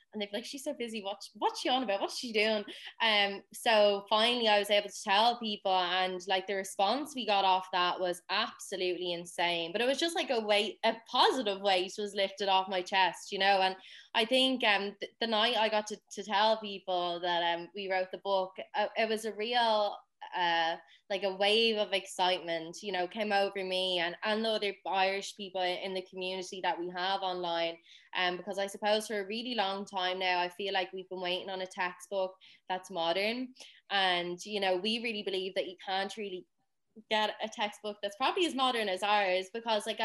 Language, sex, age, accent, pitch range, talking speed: English, female, 20-39, Irish, 185-220 Hz, 210 wpm